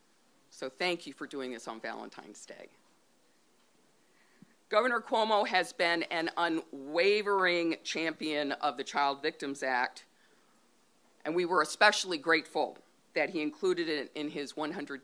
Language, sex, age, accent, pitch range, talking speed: English, female, 50-69, American, 140-190 Hz, 130 wpm